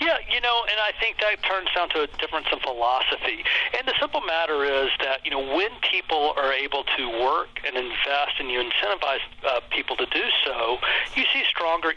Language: English